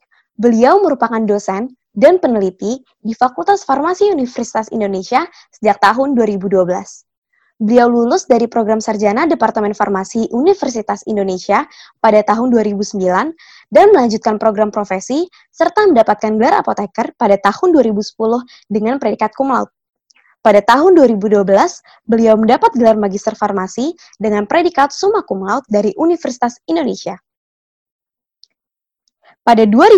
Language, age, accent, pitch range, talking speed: Indonesian, 20-39, native, 210-280 Hz, 110 wpm